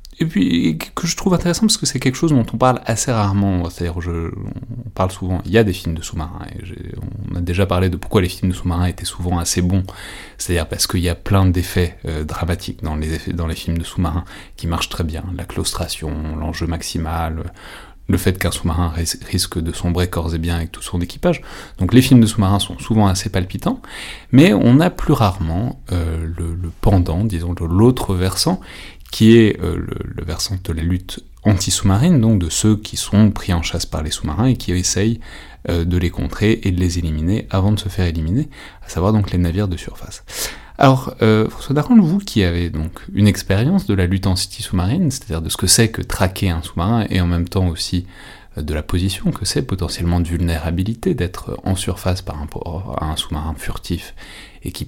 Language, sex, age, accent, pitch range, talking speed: French, male, 30-49, French, 85-105 Hz, 220 wpm